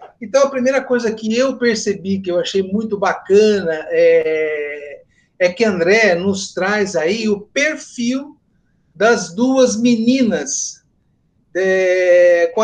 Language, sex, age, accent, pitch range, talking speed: Portuguese, male, 60-79, Brazilian, 185-240 Hz, 120 wpm